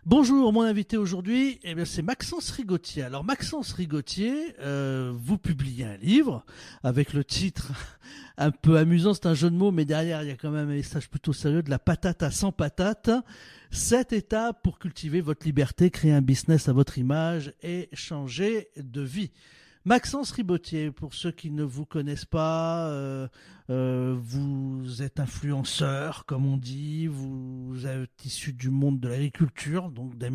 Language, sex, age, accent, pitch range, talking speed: French, male, 50-69, French, 140-185 Hz, 175 wpm